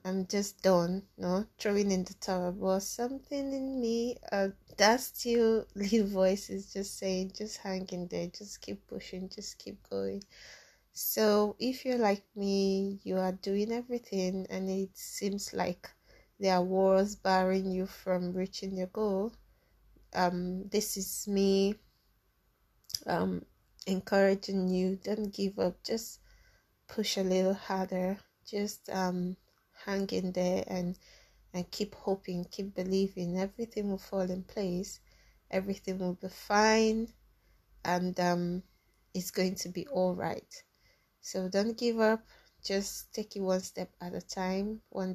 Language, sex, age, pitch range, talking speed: English, female, 20-39, 185-205 Hz, 140 wpm